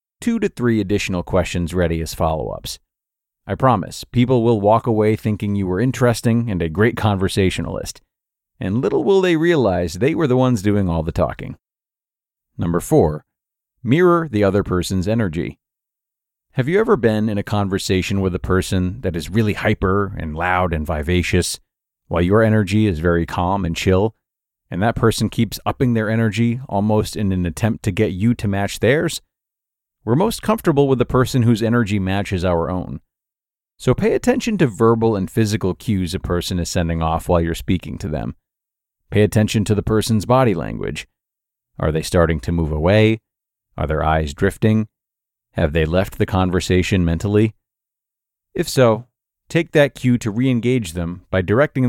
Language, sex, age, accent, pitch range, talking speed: English, male, 40-59, American, 90-115 Hz, 170 wpm